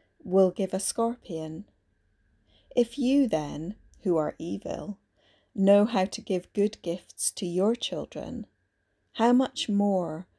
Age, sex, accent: 30-49, female, British